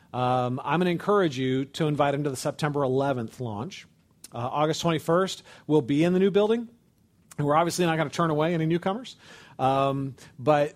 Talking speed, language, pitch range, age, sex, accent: 195 wpm, English, 130-165 Hz, 40-59, male, American